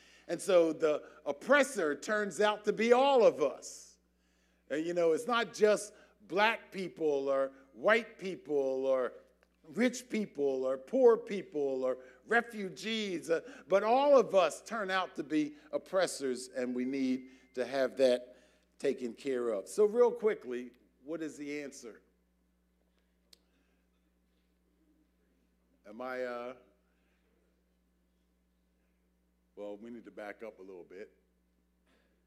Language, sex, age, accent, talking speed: English, male, 50-69, American, 125 wpm